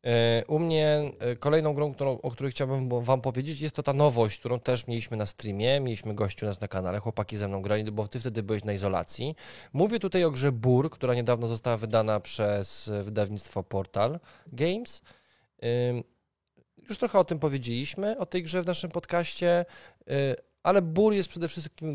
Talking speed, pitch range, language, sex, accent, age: 170 wpm, 115-150 Hz, Polish, male, native, 20-39